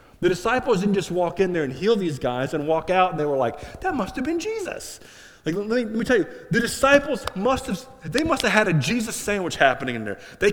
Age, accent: 30-49, American